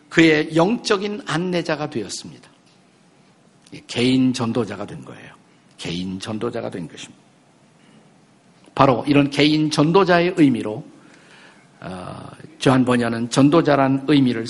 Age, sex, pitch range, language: 50-69, male, 140-185 Hz, Korean